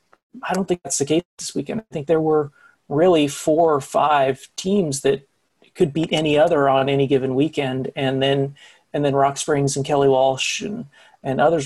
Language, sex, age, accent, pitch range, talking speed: English, male, 40-59, American, 140-165 Hz, 195 wpm